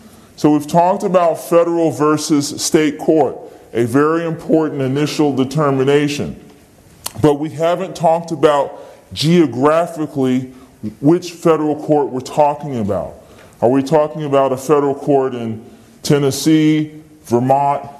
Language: English